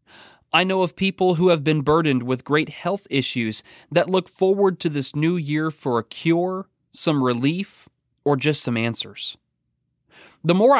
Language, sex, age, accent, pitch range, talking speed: English, male, 30-49, American, 125-165 Hz, 165 wpm